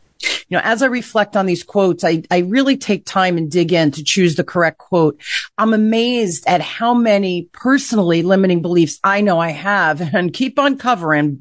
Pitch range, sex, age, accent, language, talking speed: 165-220 Hz, female, 40-59, American, English, 195 wpm